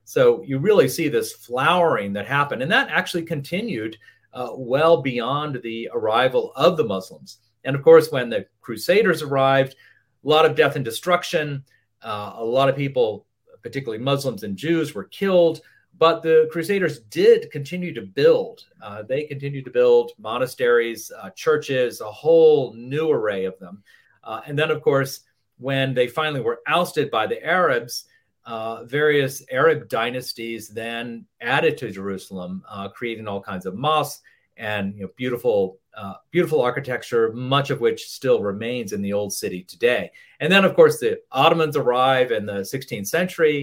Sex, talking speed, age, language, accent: male, 165 wpm, 40-59, English, American